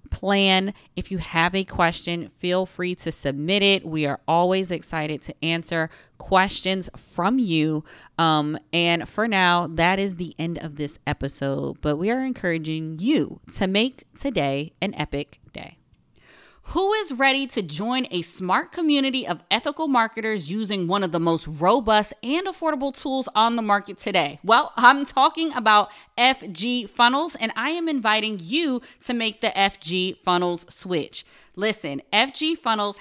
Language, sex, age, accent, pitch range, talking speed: English, female, 20-39, American, 180-255 Hz, 155 wpm